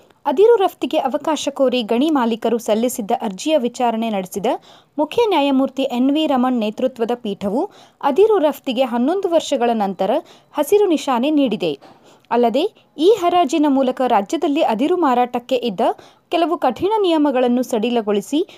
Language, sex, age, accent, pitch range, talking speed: Kannada, female, 20-39, native, 245-325 Hz, 120 wpm